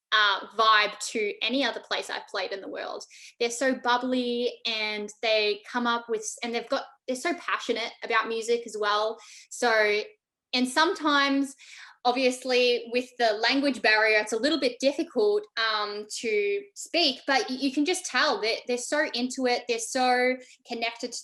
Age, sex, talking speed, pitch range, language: 10-29, female, 165 wpm, 215-265 Hz, English